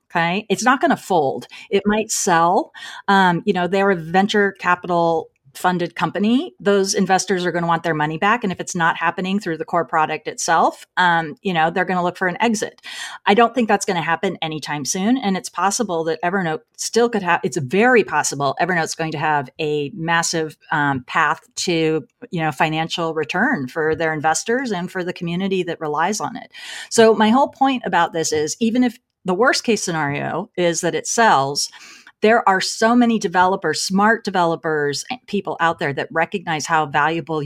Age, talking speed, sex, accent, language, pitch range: 30-49, 195 wpm, female, American, English, 160-205 Hz